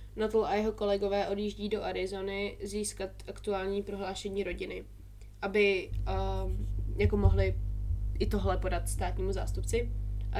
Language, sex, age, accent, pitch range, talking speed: Czech, female, 20-39, native, 95-105 Hz, 120 wpm